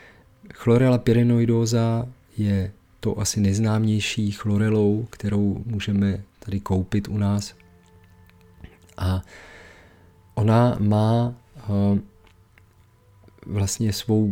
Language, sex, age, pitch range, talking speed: Czech, male, 40-59, 95-110 Hz, 75 wpm